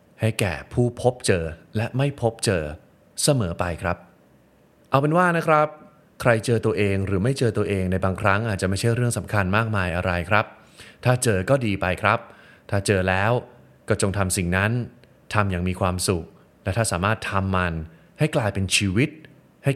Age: 20-39